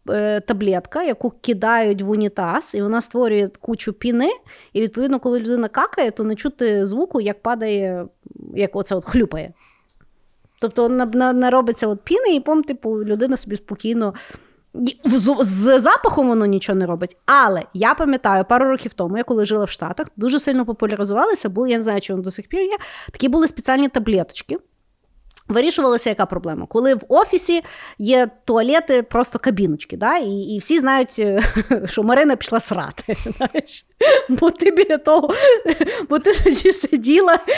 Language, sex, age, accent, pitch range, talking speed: Ukrainian, female, 30-49, native, 215-285 Hz, 155 wpm